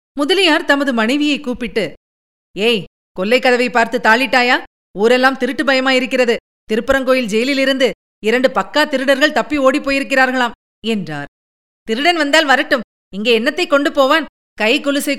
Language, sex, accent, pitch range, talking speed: Tamil, female, native, 210-280 Hz, 115 wpm